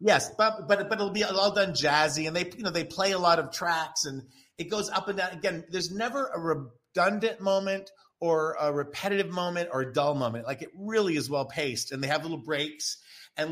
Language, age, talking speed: English, 40-59, 225 wpm